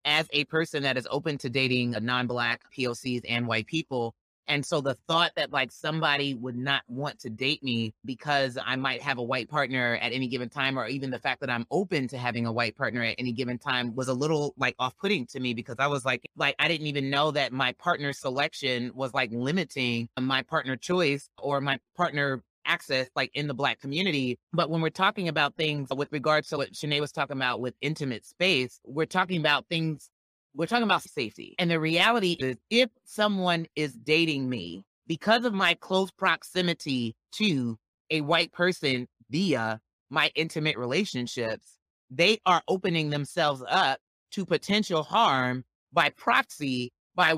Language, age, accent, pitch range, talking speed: English, 30-49, American, 125-165 Hz, 185 wpm